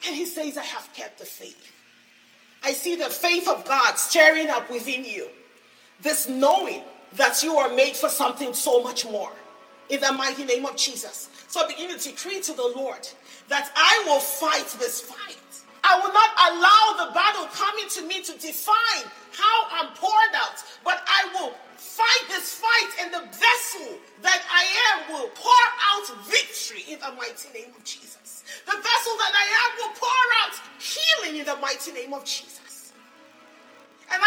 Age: 40-59